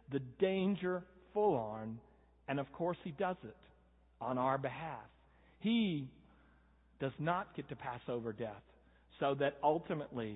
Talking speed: 140 wpm